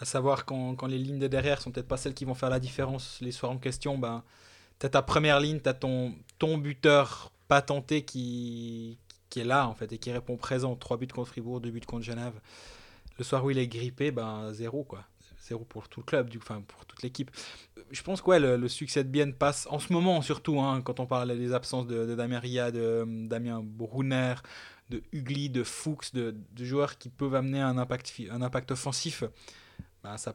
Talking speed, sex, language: 230 wpm, male, French